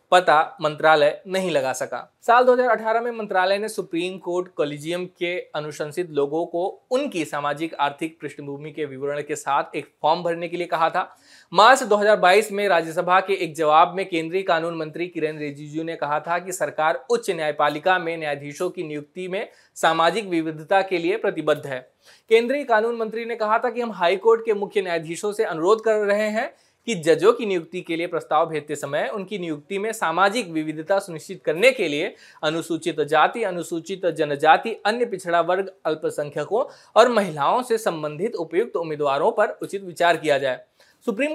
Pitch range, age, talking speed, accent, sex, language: 155-215 Hz, 20-39, 170 wpm, native, male, Hindi